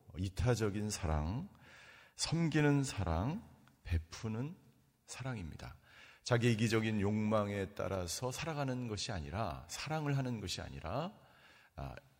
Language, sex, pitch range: Korean, male, 95-140 Hz